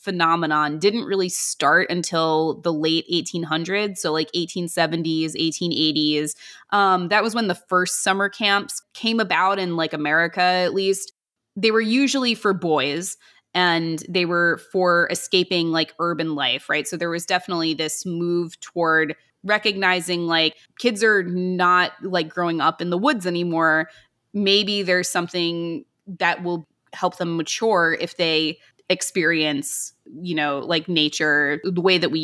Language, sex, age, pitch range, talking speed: English, female, 20-39, 160-195 Hz, 145 wpm